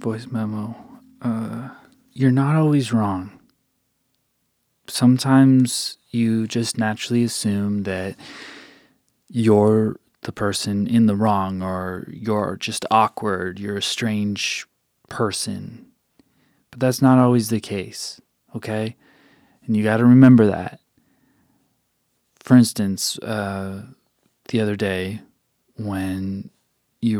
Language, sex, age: English, male, 20-39